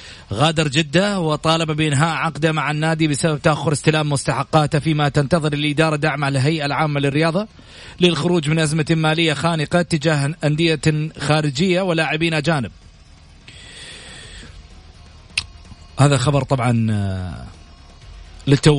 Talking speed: 100 wpm